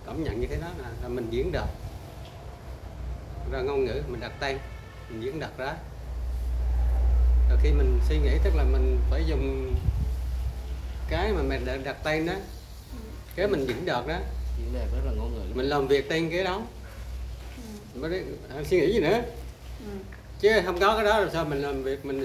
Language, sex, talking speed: Vietnamese, male, 185 wpm